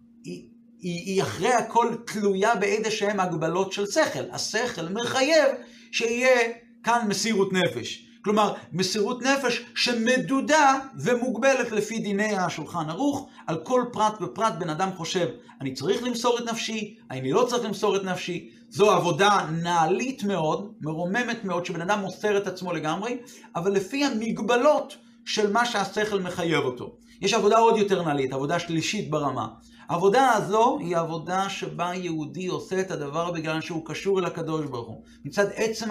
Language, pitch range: Hebrew, 180-235 Hz